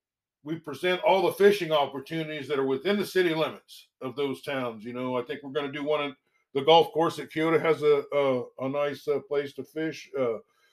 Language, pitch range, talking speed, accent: English, 135-170 Hz, 225 wpm, American